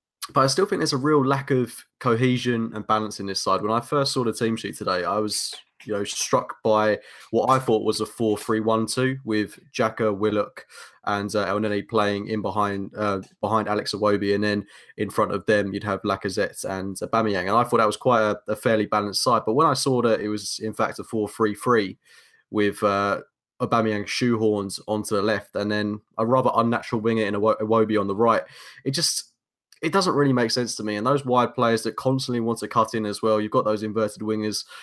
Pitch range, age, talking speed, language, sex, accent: 105-120 Hz, 20-39, 215 wpm, English, male, British